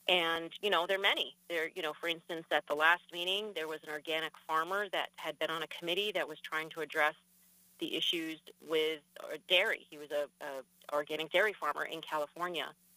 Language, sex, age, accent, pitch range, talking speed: English, female, 40-59, American, 155-185 Hz, 205 wpm